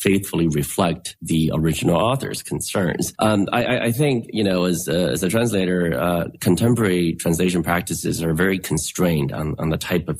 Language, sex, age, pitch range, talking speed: Finnish, male, 30-49, 80-90 Hz, 170 wpm